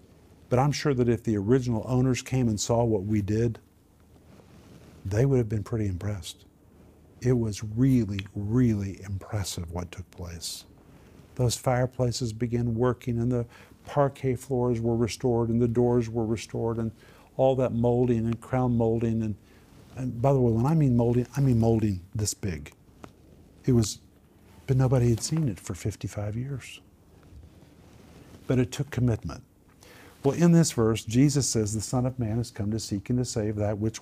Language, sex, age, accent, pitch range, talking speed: English, male, 50-69, American, 105-125 Hz, 170 wpm